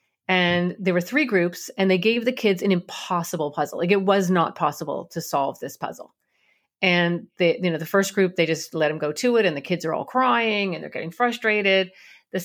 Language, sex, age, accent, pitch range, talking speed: English, female, 30-49, American, 175-225 Hz, 225 wpm